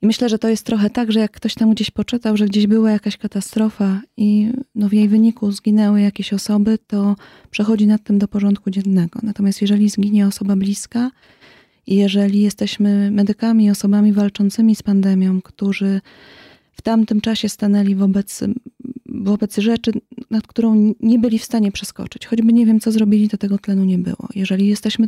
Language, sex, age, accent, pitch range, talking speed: Polish, female, 20-39, native, 205-225 Hz, 175 wpm